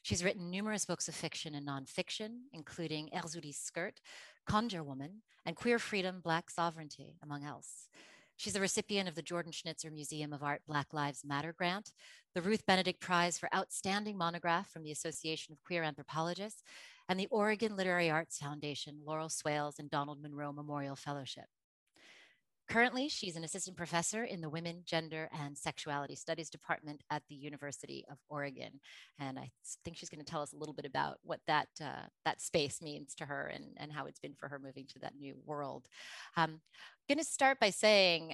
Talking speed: 180 wpm